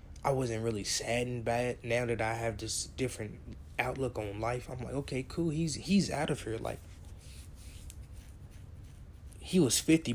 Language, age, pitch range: English, 20-39, 100-130 Hz